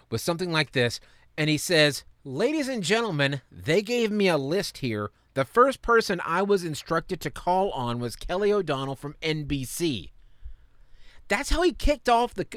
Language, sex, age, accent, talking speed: English, male, 30-49, American, 170 wpm